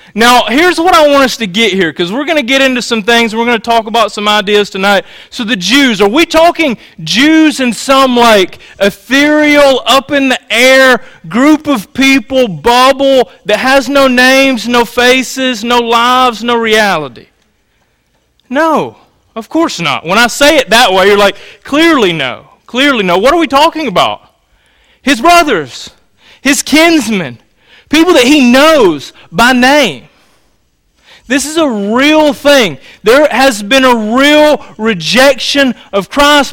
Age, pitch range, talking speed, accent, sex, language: 30-49, 225-285 Hz, 155 wpm, American, male, English